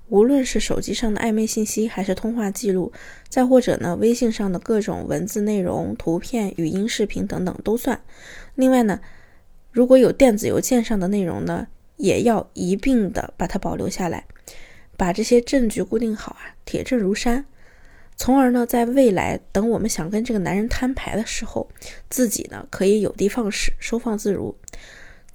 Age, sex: 20-39, female